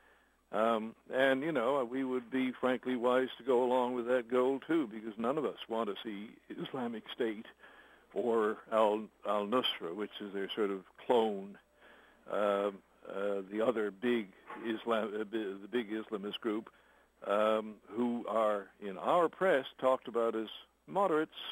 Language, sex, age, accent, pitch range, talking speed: English, male, 60-79, American, 110-135 Hz, 155 wpm